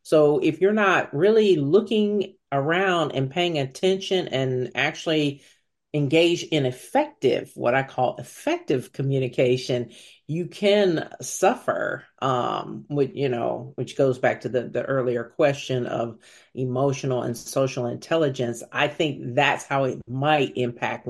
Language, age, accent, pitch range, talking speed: English, 40-59, American, 125-155 Hz, 135 wpm